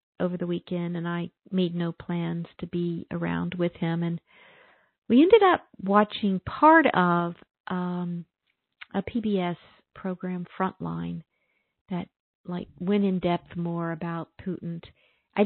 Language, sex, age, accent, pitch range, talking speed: English, female, 50-69, American, 175-225 Hz, 130 wpm